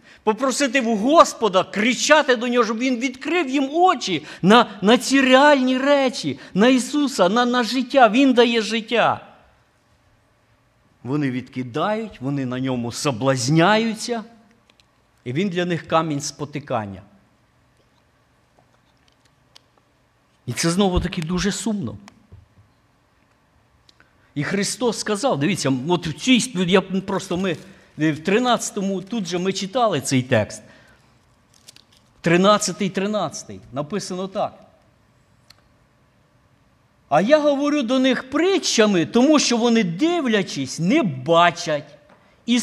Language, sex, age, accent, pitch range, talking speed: Ukrainian, male, 50-69, native, 155-245 Hz, 105 wpm